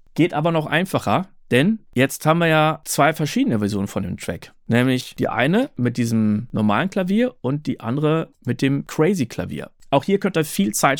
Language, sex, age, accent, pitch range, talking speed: German, male, 40-59, German, 120-180 Hz, 190 wpm